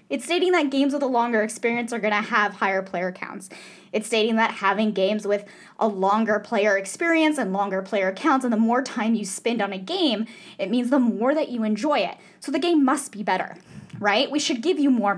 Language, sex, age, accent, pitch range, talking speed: English, female, 10-29, American, 195-250 Hz, 230 wpm